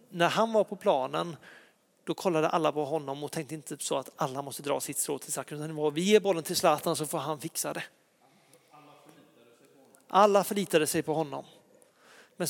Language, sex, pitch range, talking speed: Swedish, male, 155-195 Hz, 180 wpm